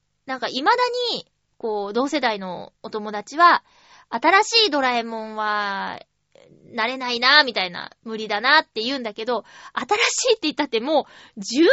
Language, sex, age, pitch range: Japanese, female, 20-39, 220-340 Hz